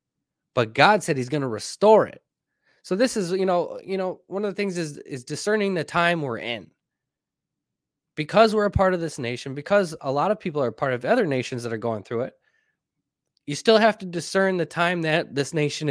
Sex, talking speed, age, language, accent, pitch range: male, 220 wpm, 20-39, English, American, 130-185 Hz